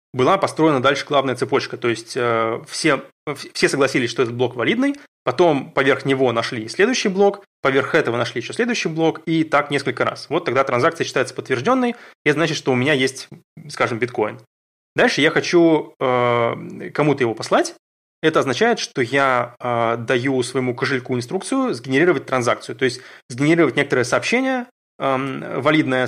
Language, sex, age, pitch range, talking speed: Russian, male, 20-39, 125-160 Hz, 160 wpm